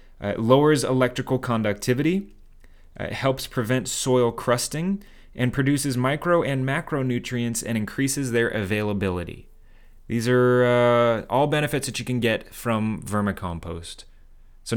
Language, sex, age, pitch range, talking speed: English, male, 20-39, 100-125 Hz, 125 wpm